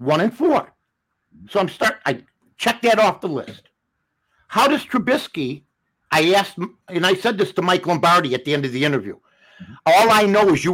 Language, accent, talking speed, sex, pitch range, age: English, American, 195 wpm, male, 165-225 Hz, 50-69